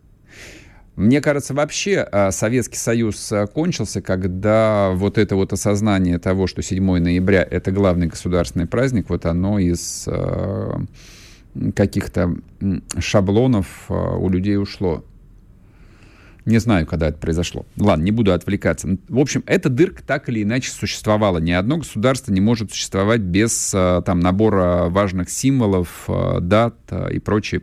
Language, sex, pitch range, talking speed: Russian, male, 90-120 Hz, 125 wpm